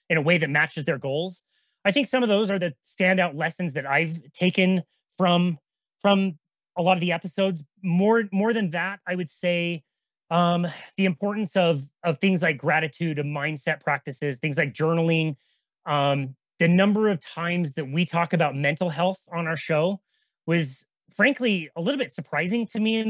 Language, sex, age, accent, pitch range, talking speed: English, male, 30-49, American, 160-195 Hz, 180 wpm